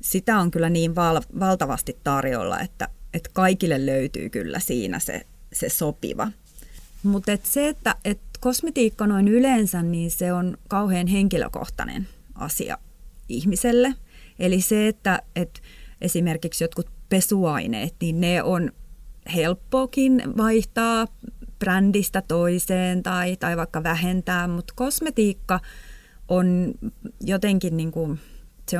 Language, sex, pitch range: Finnish, female, 170-215 Hz